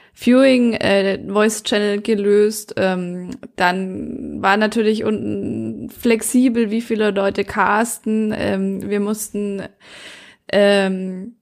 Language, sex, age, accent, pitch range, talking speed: German, female, 20-39, German, 200-230 Hz, 100 wpm